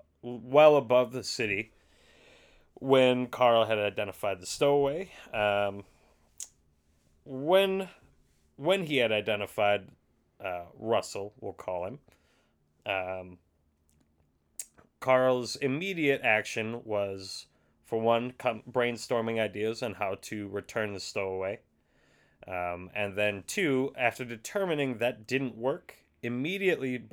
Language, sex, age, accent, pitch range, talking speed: English, male, 30-49, American, 95-125 Hz, 105 wpm